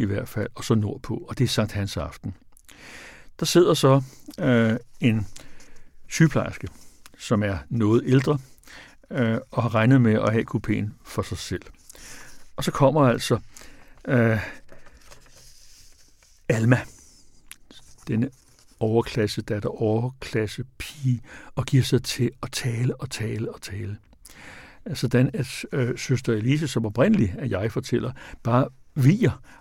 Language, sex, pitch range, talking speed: Danish, male, 110-130 Hz, 140 wpm